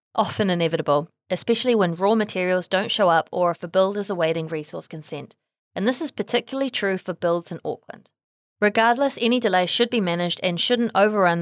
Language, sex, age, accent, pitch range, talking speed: English, female, 20-39, Australian, 175-230 Hz, 185 wpm